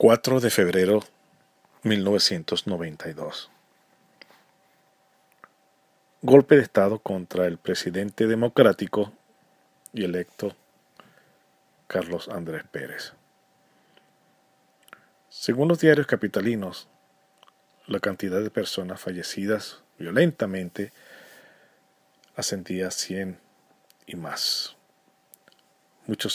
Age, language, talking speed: 40-59, English, 75 wpm